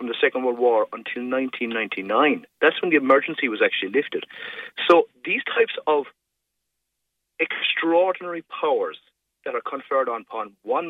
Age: 40-59